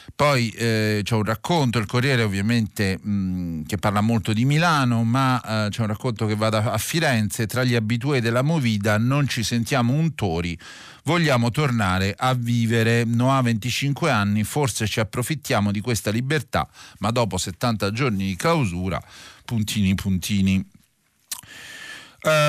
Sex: male